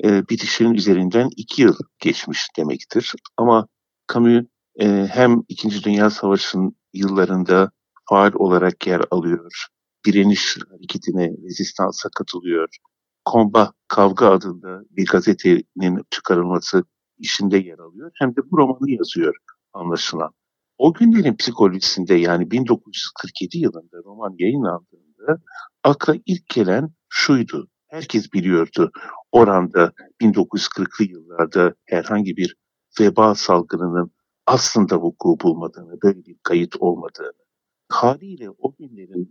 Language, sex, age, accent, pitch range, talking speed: Turkish, male, 60-79, native, 90-135 Hz, 105 wpm